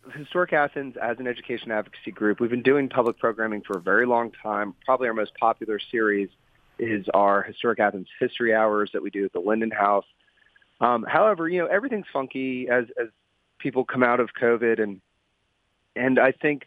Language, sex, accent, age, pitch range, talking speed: English, male, American, 30-49, 105-130 Hz, 185 wpm